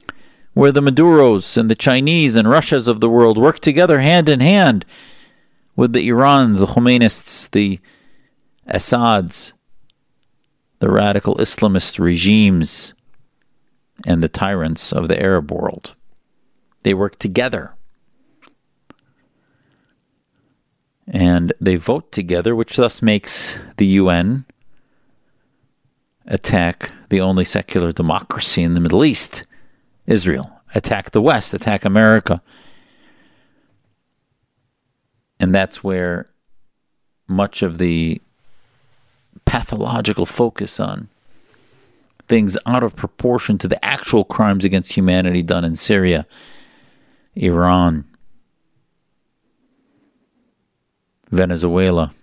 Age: 50-69